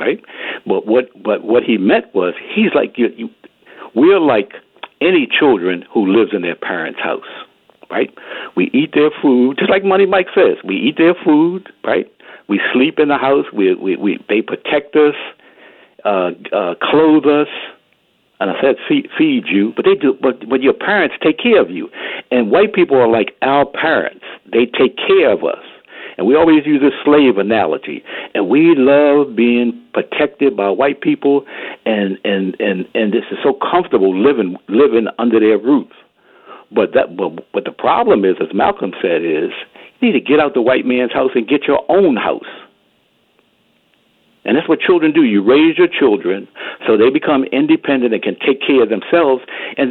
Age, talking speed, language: 60-79, 185 wpm, English